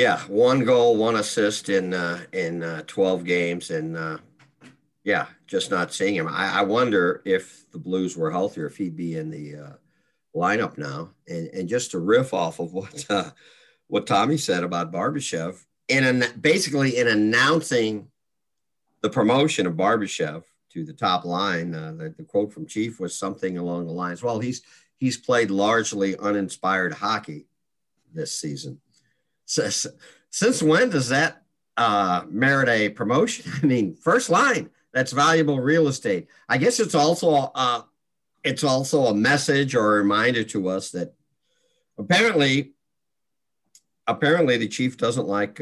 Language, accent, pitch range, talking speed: English, American, 95-140 Hz, 155 wpm